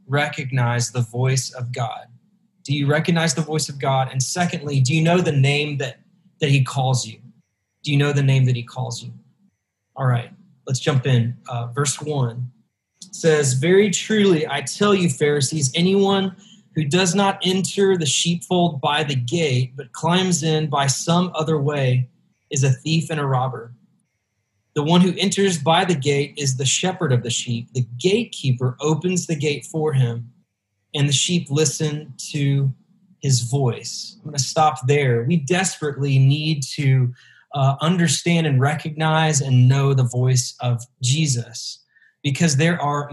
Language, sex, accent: English, male, American